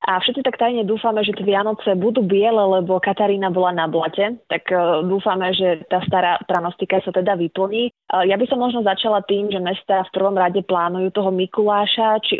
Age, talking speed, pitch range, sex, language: 20-39, 190 wpm, 180-210 Hz, female, Slovak